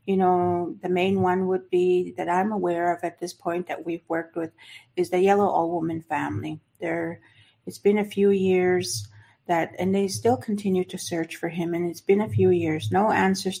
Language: English